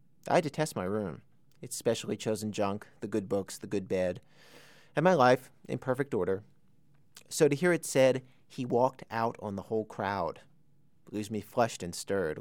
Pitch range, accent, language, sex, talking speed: 110-150 Hz, American, English, male, 180 wpm